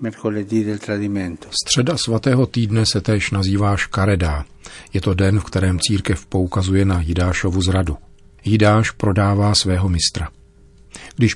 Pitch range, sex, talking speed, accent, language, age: 90-105 Hz, male, 115 wpm, native, Czech, 40-59